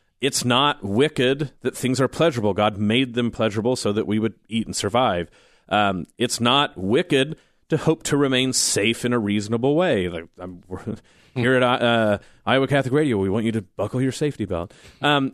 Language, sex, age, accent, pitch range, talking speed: English, male, 40-59, American, 105-130 Hz, 180 wpm